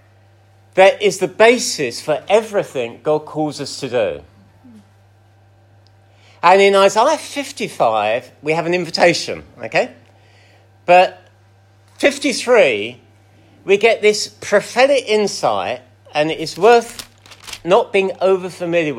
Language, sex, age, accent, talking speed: English, male, 50-69, British, 105 wpm